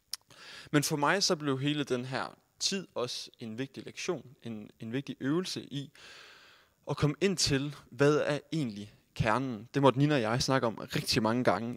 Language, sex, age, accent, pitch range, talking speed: Danish, male, 20-39, native, 115-145 Hz, 185 wpm